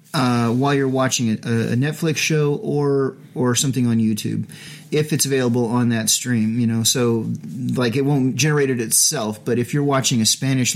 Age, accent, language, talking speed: 30-49, American, English, 190 wpm